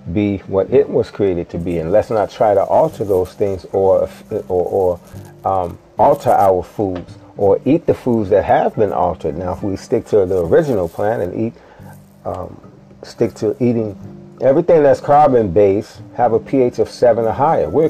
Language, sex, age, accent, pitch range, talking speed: English, male, 40-59, American, 125-185 Hz, 185 wpm